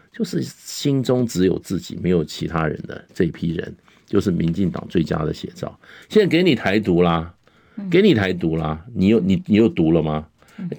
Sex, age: male, 50-69